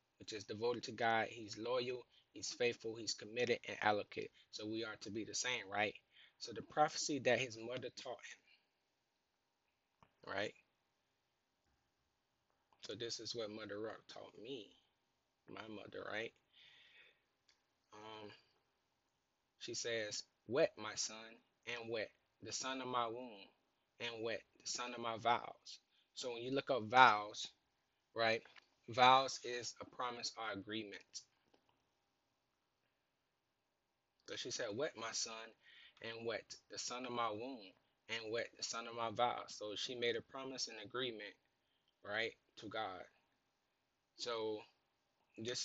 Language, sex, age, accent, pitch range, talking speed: English, male, 20-39, American, 110-125 Hz, 140 wpm